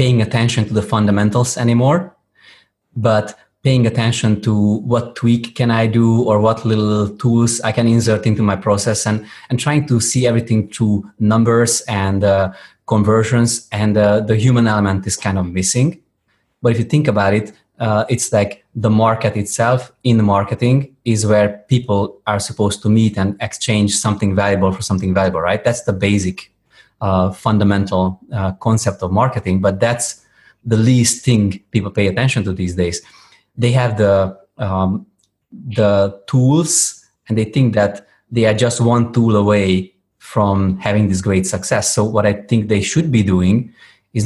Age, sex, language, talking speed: 20-39, male, English, 170 wpm